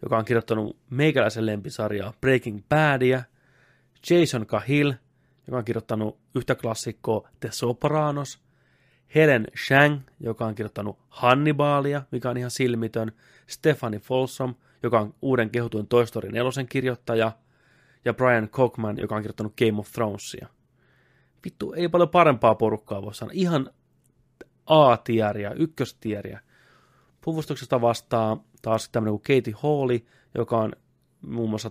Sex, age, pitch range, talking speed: male, 30-49, 110-130 Hz, 125 wpm